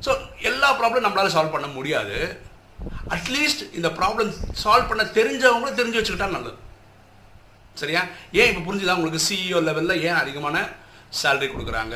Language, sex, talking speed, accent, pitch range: Tamil, male, 135 wpm, native, 115-180 Hz